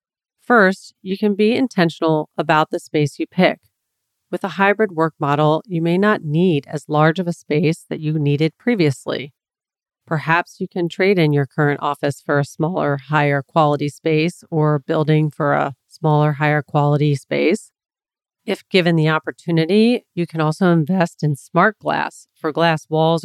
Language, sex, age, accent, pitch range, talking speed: English, female, 40-59, American, 150-180 Hz, 160 wpm